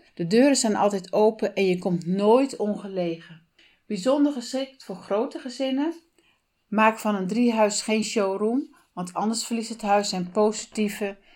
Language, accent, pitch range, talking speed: Dutch, Dutch, 180-225 Hz, 150 wpm